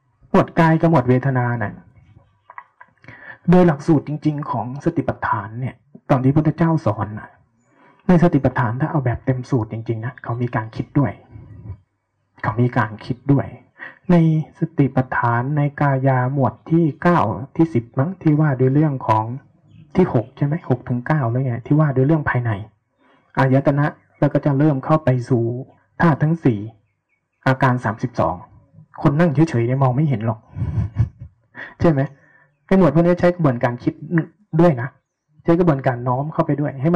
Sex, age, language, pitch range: male, 20-39, Thai, 120-155 Hz